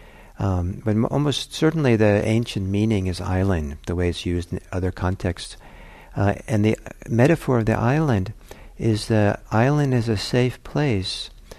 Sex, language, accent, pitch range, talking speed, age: male, English, American, 90-110 Hz, 155 wpm, 60-79